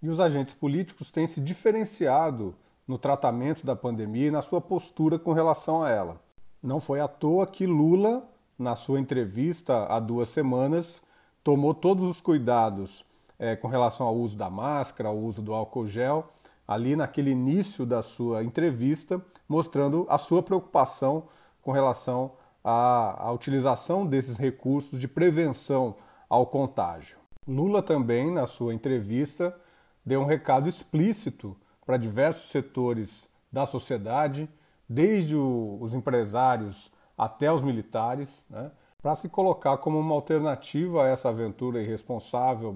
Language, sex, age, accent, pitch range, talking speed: Portuguese, male, 40-59, Brazilian, 120-160 Hz, 140 wpm